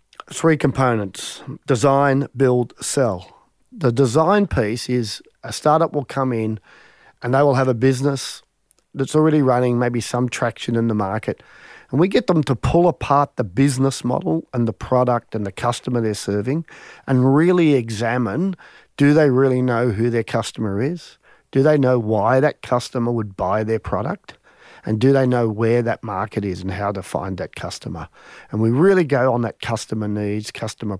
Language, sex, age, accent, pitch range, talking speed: English, male, 40-59, Australian, 115-140 Hz, 175 wpm